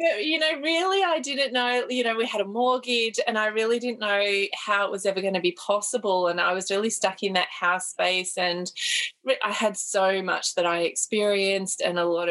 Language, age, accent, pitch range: English, 20-39, Australian, 180-235 Hz